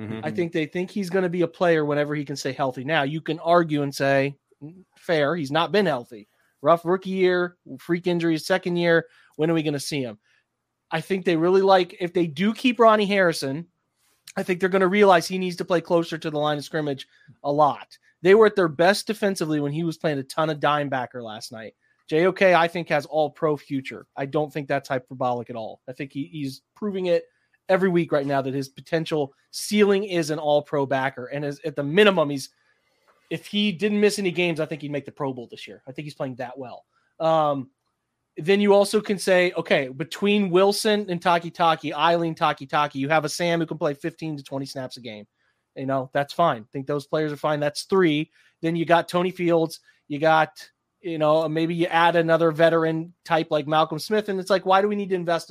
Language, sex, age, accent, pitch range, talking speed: English, male, 30-49, American, 145-180 Hz, 230 wpm